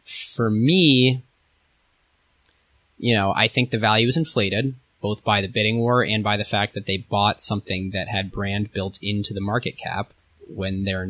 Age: 20-39